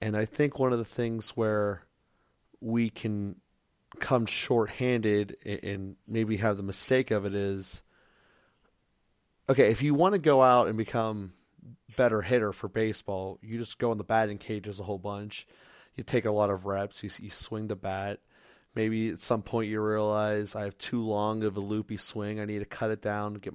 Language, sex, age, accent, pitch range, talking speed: English, male, 30-49, American, 105-115 Hz, 195 wpm